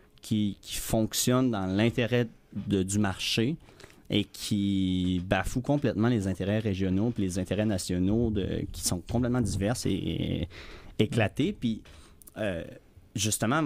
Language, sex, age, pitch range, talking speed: French, male, 30-49, 95-115 Hz, 130 wpm